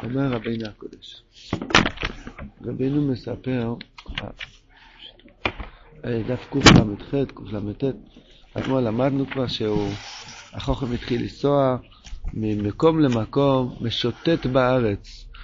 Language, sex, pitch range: Hebrew, male, 115-155 Hz